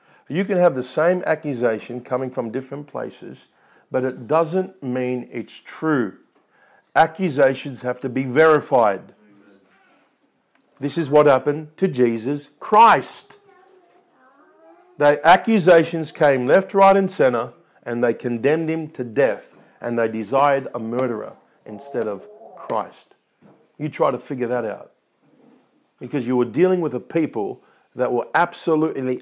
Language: English